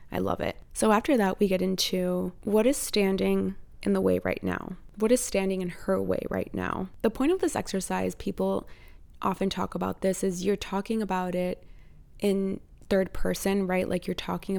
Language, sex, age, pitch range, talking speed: English, female, 20-39, 180-195 Hz, 195 wpm